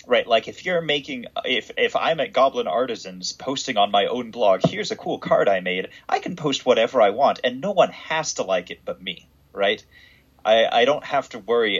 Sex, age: male, 30-49